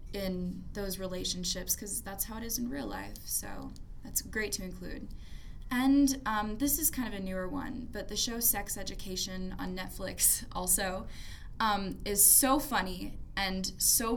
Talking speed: 165 wpm